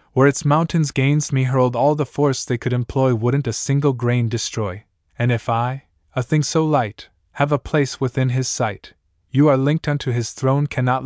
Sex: male